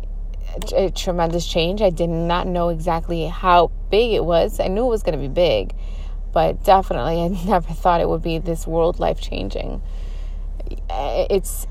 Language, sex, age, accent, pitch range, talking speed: English, female, 30-49, American, 150-205 Hz, 165 wpm